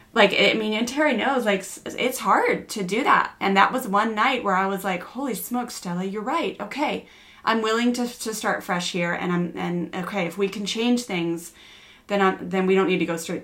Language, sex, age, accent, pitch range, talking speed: English, female, 30-49, American, 180-215 Hz, 230 wpm